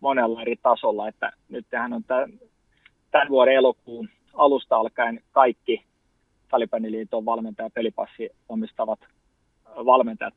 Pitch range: 110-175 Hz